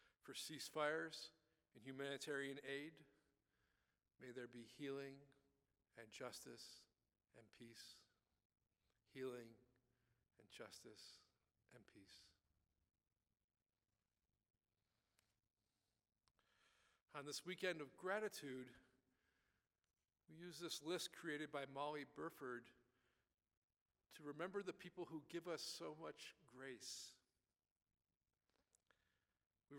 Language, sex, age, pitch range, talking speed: English, male, 50-69, 110-155 Hz, 85 wpm